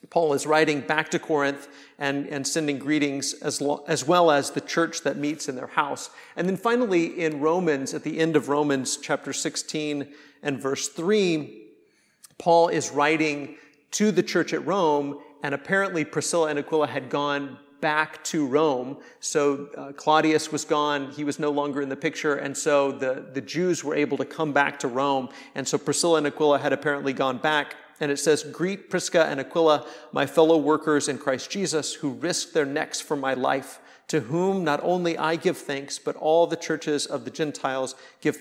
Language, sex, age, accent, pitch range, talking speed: English, male, 50-69, American, 140-160 Hz, 190 wpm